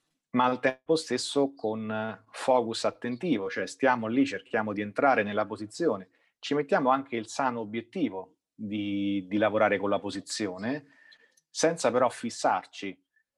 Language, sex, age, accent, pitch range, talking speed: Italian, male, 30-49, native, 105-135 Hz, 135 wpm